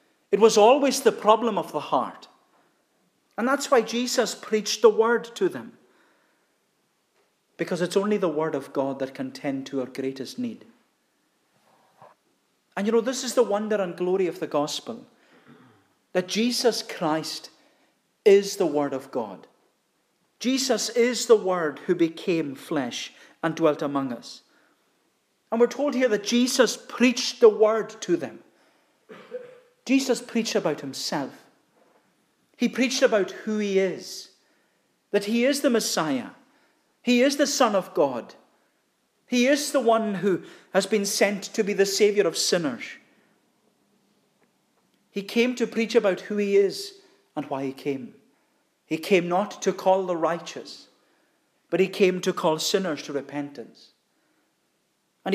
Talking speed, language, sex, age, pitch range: 145 wpm, English, male, 40-59, 180-245 Hz